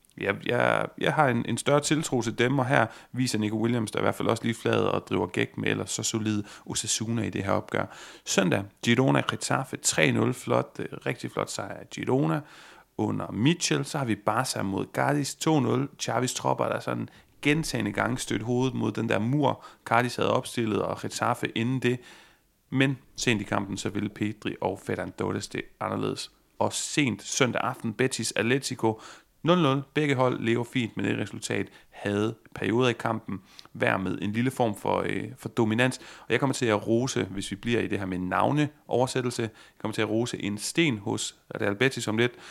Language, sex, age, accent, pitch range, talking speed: Danish, male, 30-49, native, 105-130 Hz, 185 wpm